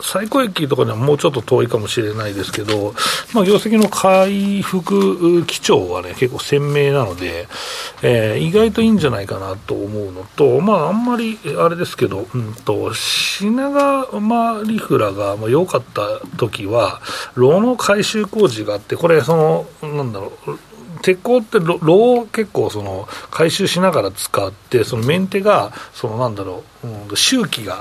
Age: 40-59